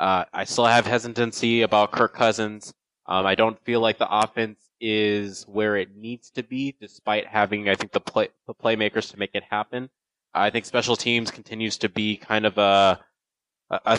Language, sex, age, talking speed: English, male, 20-39, 190 wpm